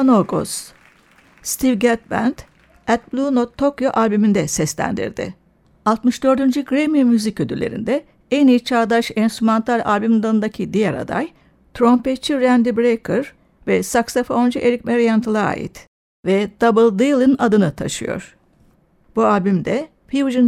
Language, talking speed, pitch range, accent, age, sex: Turkish, 105 wpm, 215-255 Hz, native, 60-79, female